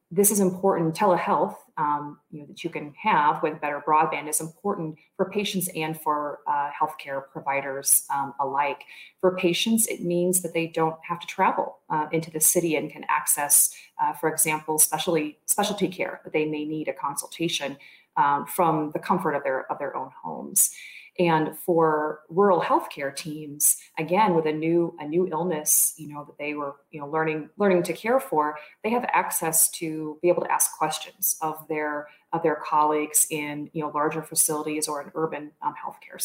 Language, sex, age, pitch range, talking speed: English, female, 30-49, 150-175 Hz, 185 wpm